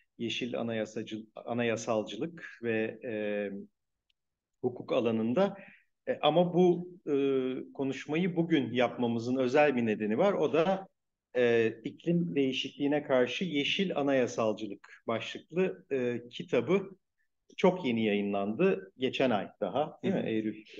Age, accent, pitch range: 50-69, native, 115-160 Hz